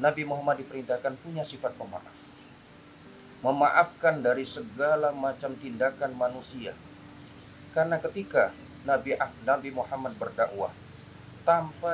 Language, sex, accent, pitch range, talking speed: Indonesian, male, native, 120-150 Hz, 95 wpm